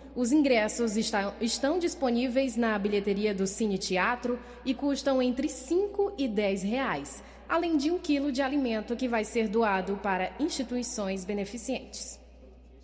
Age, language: 20-39, Portuguese